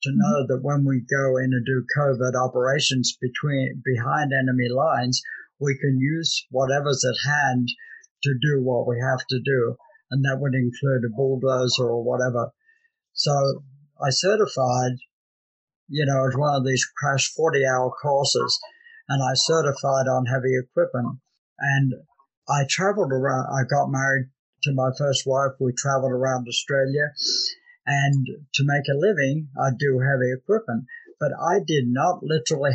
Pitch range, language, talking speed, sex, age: 130-155 Hz, English, 150 wpm, male, 60-79